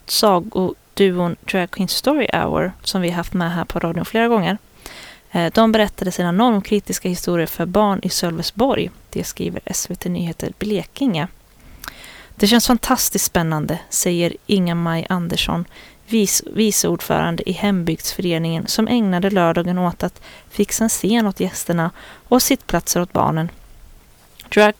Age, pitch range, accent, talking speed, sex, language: 20-39, 180-225 Hz, native, 140 wpm, female, Swedish